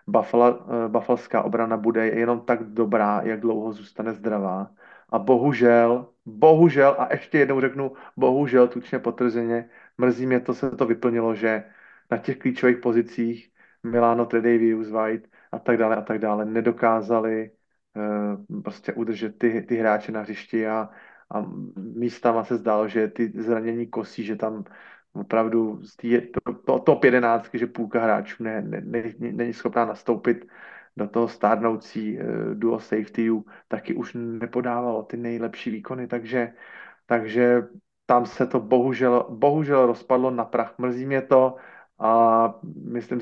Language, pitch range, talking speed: Slovak, 115-125 Hz, 145 wpm